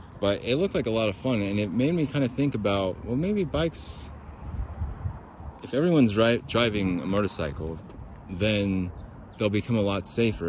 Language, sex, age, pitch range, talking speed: English, male, 30-49, 90-115 Hz, 175 wpm